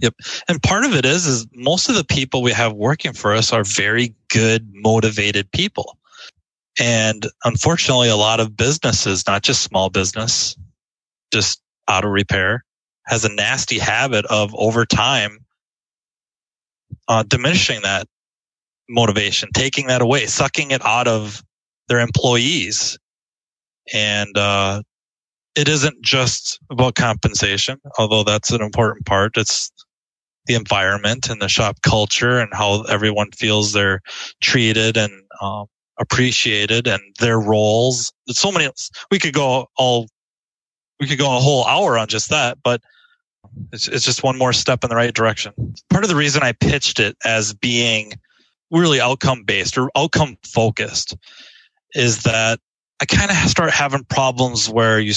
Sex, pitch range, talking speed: male, 105-130 Hz, 150 wpm